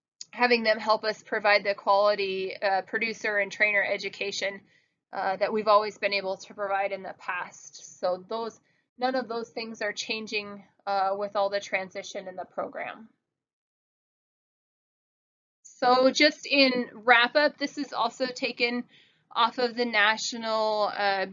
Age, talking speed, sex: 20-39, 150 wpm, female